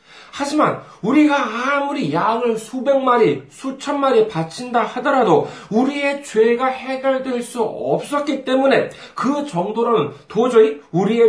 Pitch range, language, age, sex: 210-260 Hz, Korean, 40-59, male